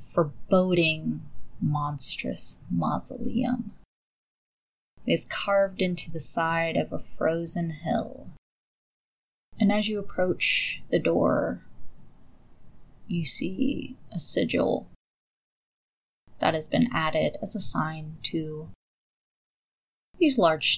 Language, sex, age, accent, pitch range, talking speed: English, female, 20-39, American, 165-210 Hz, 95 wpm